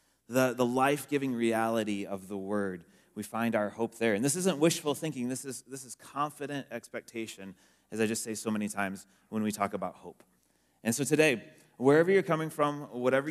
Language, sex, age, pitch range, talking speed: English, male, 30-49, 105-130 Hz, 195 wpm